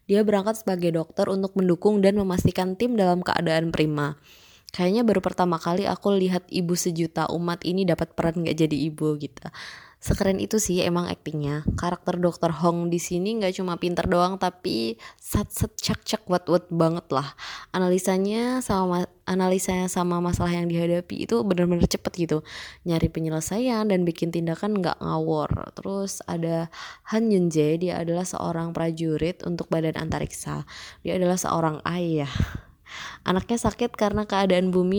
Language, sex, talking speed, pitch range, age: Indonesian, female, 150 wpm, 165-190 Hz, 20-39